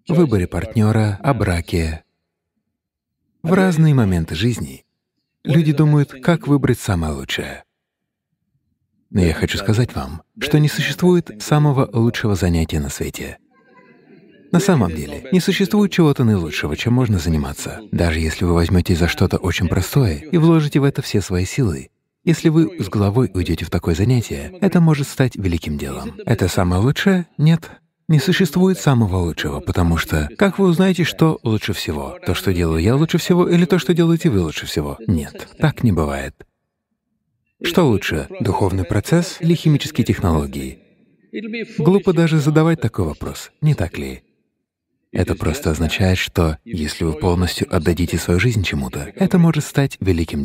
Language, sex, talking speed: English, male, 155 wpm